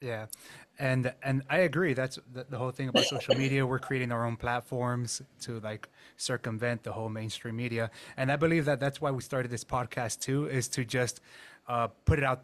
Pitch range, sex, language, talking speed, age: 120-140 Hz, male, English, 210 wpm, 20-39